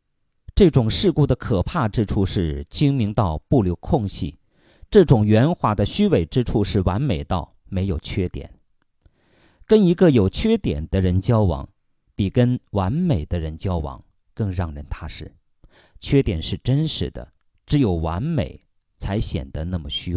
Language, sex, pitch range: Chinese, male, 90-130 Hz